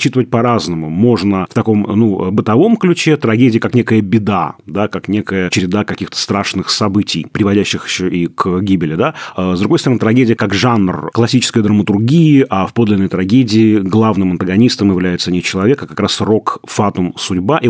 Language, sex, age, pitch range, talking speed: Russian, male, 30-49, 100-130 Hz, 165 wpm